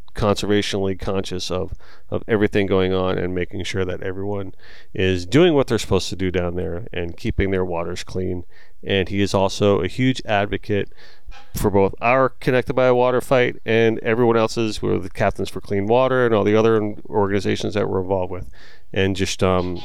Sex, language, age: male, English, 30-49